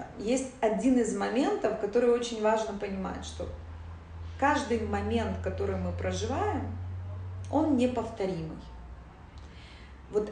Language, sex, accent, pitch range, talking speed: Russian, female, native, 170-250 Hz, 100 wpm